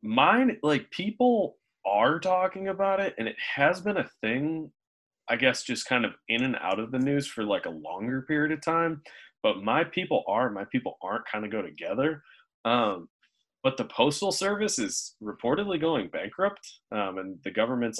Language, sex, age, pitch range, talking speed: English, male, 20-39, 105-150 Hz, 185 wpm